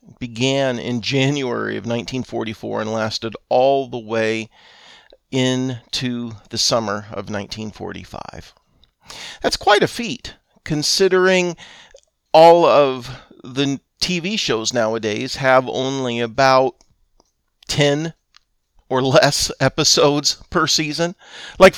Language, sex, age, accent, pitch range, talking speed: English, male, 50-69, American, 110-155 Hz, 100 wpm